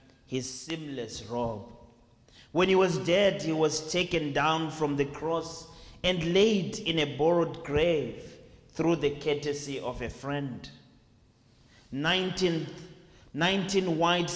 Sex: male